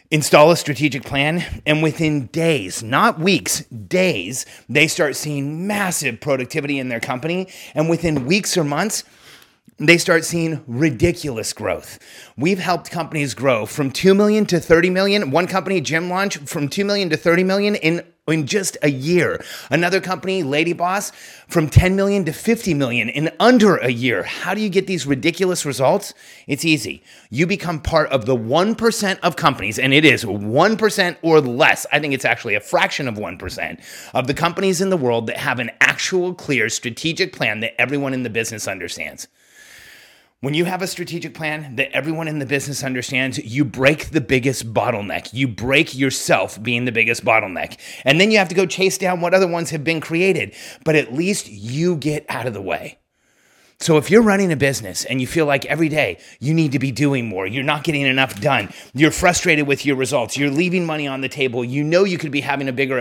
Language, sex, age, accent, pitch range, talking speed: English, male, 30-49, American, 135-175 Hz, 195 wpm